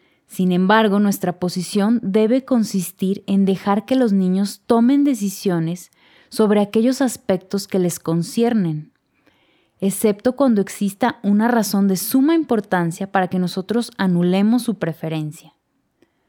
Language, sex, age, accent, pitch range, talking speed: Spanish, female, 20-39, Mexican, 180-225 Hz, 120 wpm